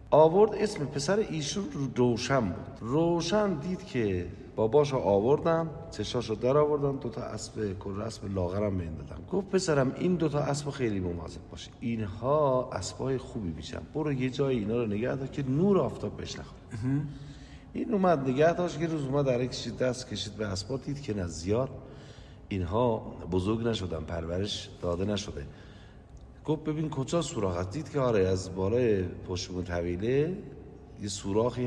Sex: male